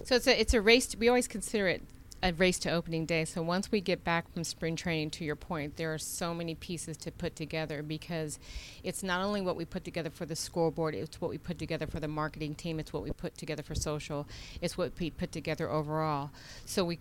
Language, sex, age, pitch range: English, female, 40-59, 155-175 Hz